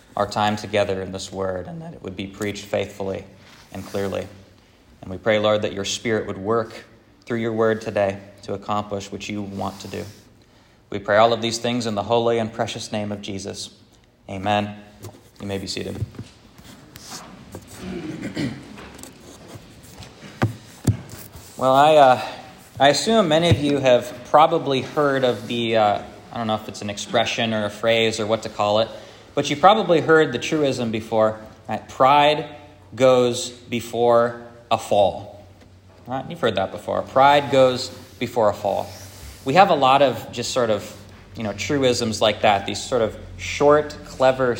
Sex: male